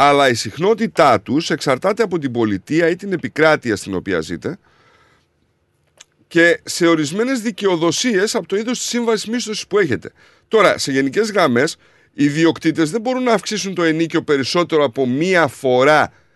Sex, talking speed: male, 150 wpm